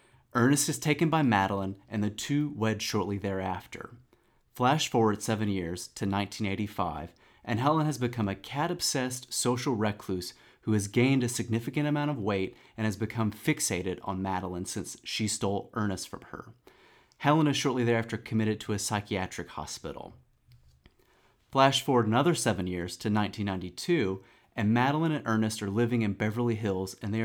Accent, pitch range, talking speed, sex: American, 100-125 Hz, 160 wpm, male